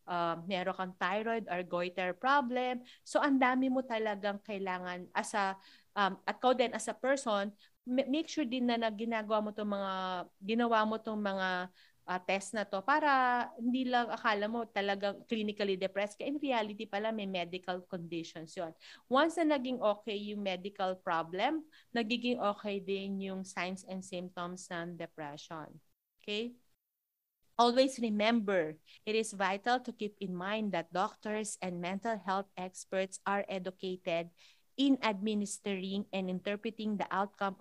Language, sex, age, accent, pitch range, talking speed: Filipino, female, 40-59, native, 185-230 Hz, 145 wpm